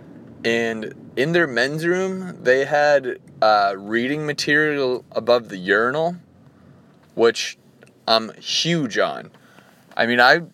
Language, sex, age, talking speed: English, male, 20-39, 115 wpm